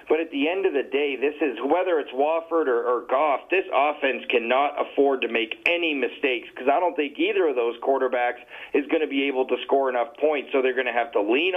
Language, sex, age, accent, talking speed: English, male, 40-59, American, 245 wpm